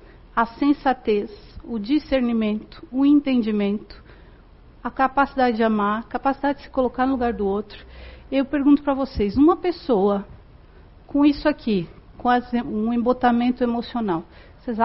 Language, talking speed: Portuguese, 135 wpm